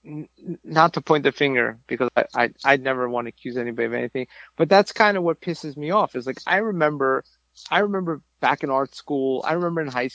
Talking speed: 225 wpm